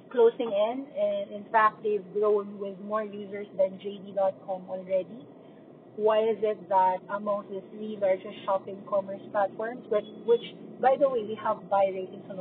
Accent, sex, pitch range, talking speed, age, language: Filipino, female, 180-220 Hz, 165 wpm, 40-59, English